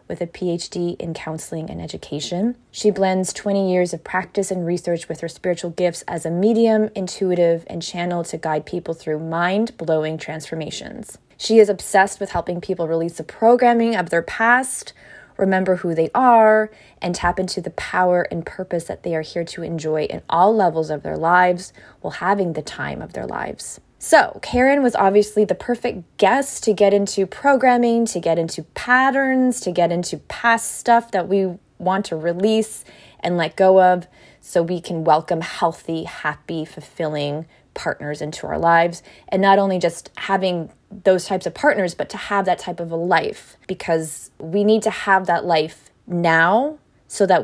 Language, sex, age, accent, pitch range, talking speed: English, female, 20-39, American, 165-205 Hz, 175 wpm